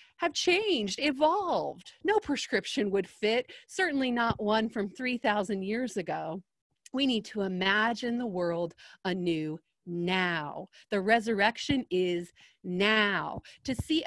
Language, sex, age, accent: English, female, 30-49, American